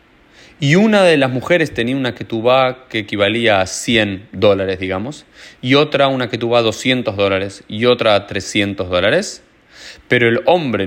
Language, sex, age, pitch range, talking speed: Spanish, male, 20-39, 100-135 Hz, 160 wpm